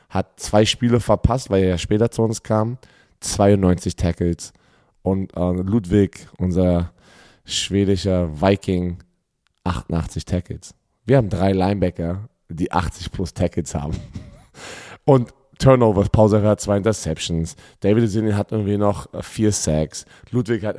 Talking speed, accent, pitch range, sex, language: 130 wpm, German, 90-115 Hz, male, German